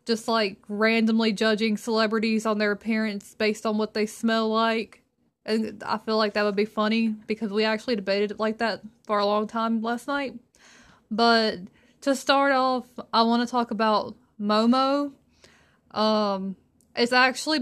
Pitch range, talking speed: 210-240 Hz, 165 wpm